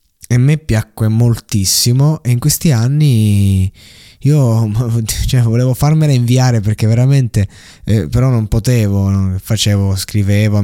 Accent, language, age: native, Italian, 20-39